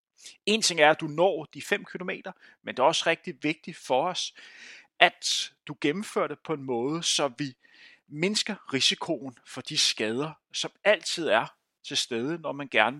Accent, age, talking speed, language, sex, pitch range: native, 30-49, 180 wpm, Danish, male, 150-210 Hz